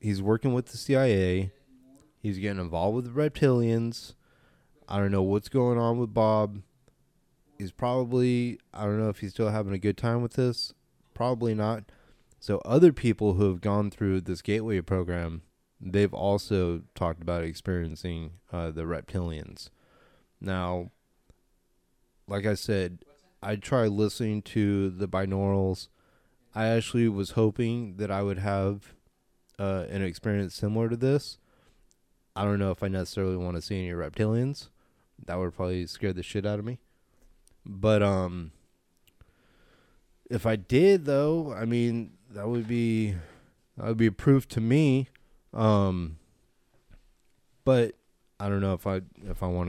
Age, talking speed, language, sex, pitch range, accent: 20-39, 150 wpm, English, male, 95-120 Hz, American